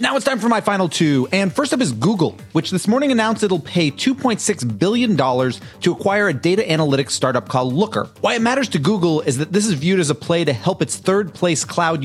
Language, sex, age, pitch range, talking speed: English, male, 40-59, 140-195 Hz, 235 wpm